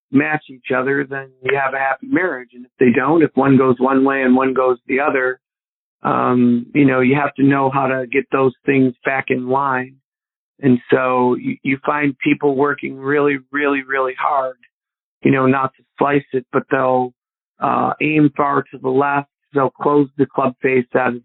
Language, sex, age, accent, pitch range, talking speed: English, male, 40-59, American, 130-145 Hz, 200 wpm